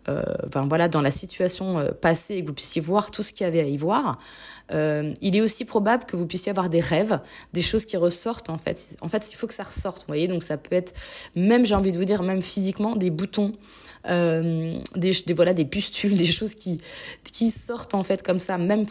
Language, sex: French, female